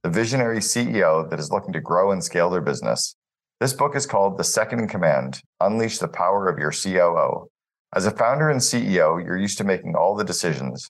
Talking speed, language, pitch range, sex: 210 wpm, English, 85-110 Hz, male